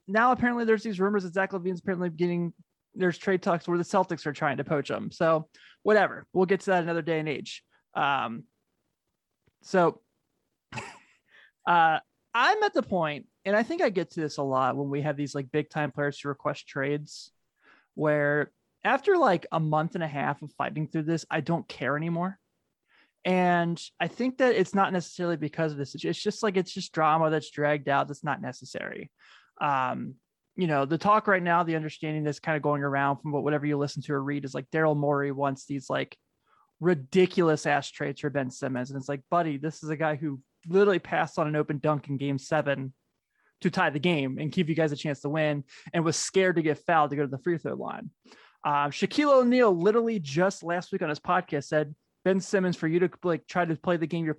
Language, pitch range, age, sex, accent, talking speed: English, 145-180 Hz, 20-39, male, American, 215 wpm